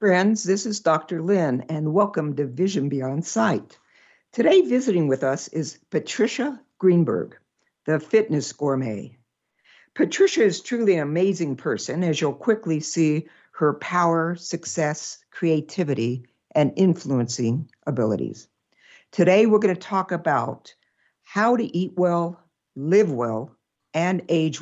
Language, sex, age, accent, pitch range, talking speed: English, female, 60-79, American, 140-195 Hz, 125 wpm